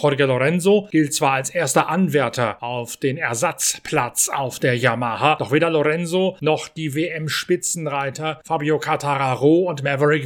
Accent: German